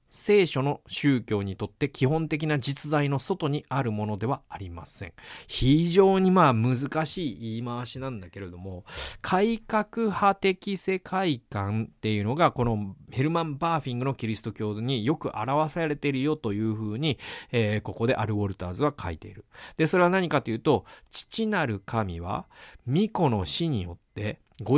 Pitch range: 110-180 Hz